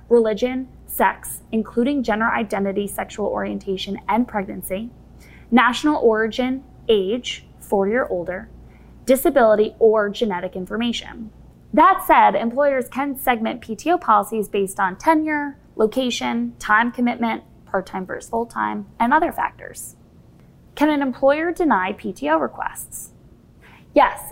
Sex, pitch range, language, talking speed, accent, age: female, 200-270 Hz, English, 110 wpm, American, 10-29